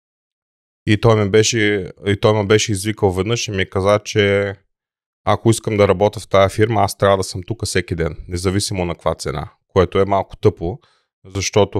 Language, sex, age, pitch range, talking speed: Bulgarian, male, 30-49, 95-110 Hz, 175 wpm